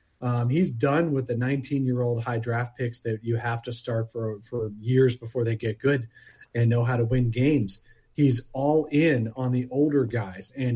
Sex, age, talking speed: male, 30-49, 195 wpm